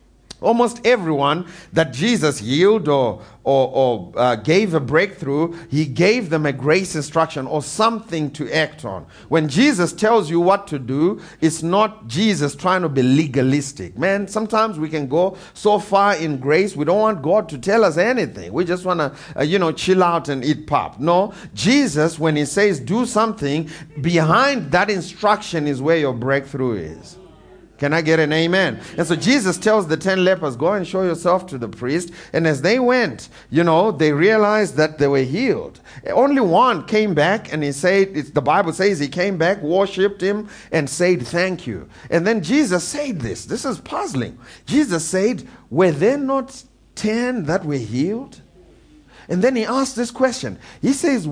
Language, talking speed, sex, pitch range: English, 180 wpm, male, 150-205 Hz